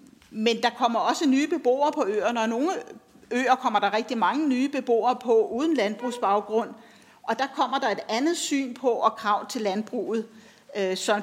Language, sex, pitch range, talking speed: Danish, female, 205-245 Hz, 175 wpm